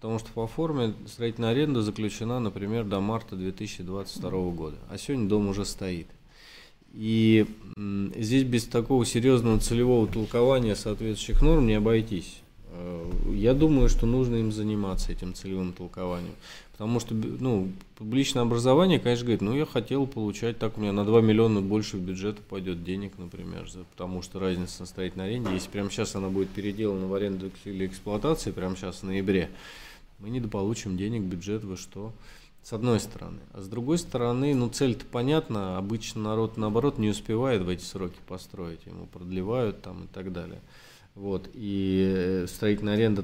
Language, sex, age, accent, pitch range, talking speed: Russian, male, 20-39, native, 95-115 Hz, 160 wpm